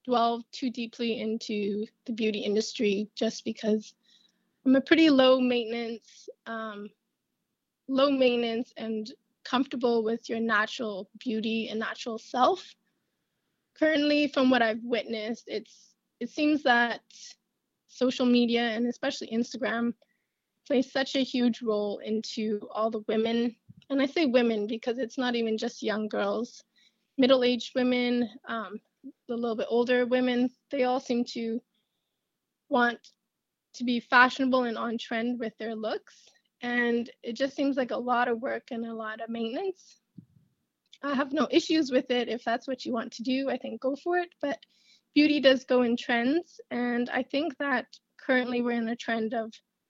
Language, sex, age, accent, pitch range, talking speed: English, female, 20-39, American, 225-260 Hz, 160 wpm